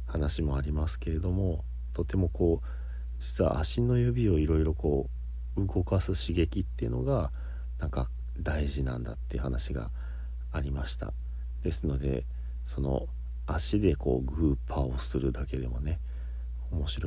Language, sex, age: Japanese, male, 40-59